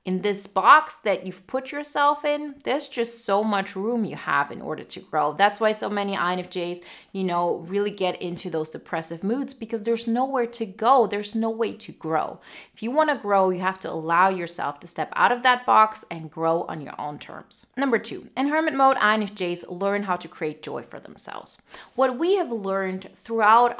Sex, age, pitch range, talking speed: female, 30-49, 185-235 Hz, 205 wpm